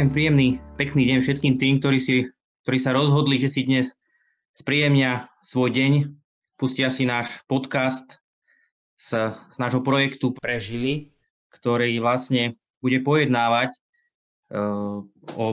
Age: 20-39